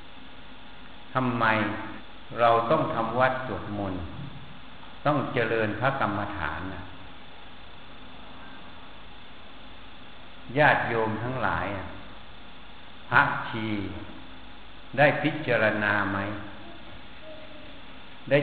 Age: 60-79